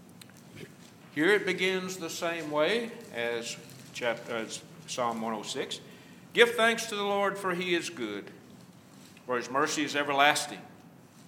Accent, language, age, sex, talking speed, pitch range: American, English, 60-79, male, 120 wpm, 130-185 Hz